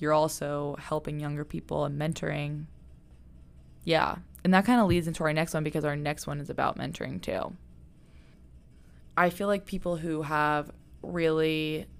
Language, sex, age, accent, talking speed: English, female, 20-39, American, 160 wpm